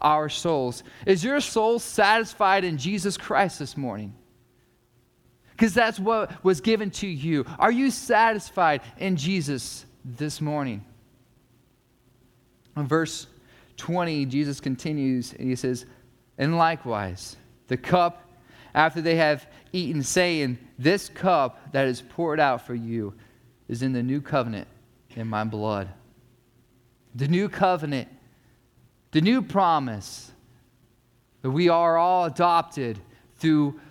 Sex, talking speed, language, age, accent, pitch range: male, 125 wpm, English, 30-49, American, 120-170 Hz